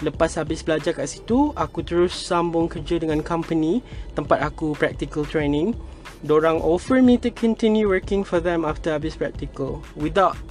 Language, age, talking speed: Malay, 20-39, 155 wpm